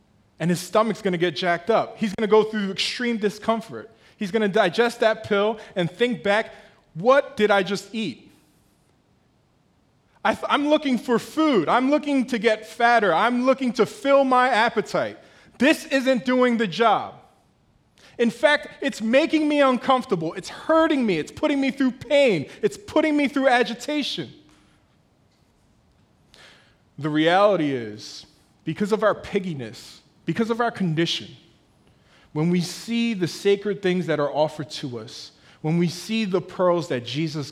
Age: 20-39